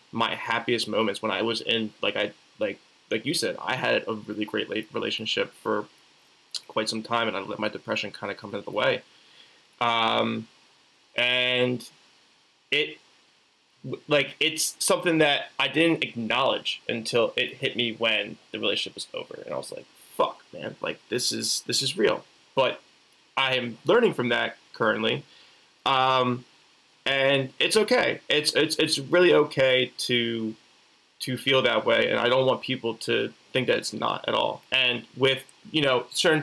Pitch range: 115-135 Hz